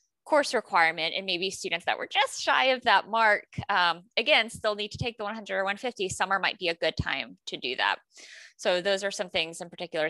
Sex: female